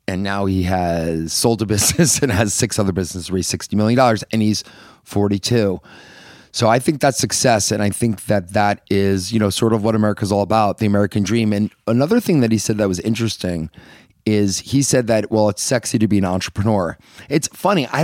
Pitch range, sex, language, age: 95-115 Hz, male, English, 30-49